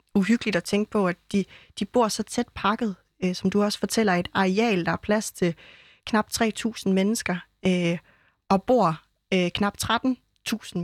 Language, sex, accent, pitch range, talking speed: Danish, female, native, 185-215 Hz, 170 wpm